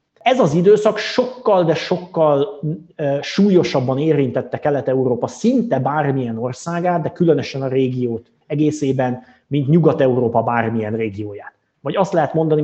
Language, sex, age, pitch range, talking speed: Hungarian, male, 30-49, 130-170 Hz, 120 wpm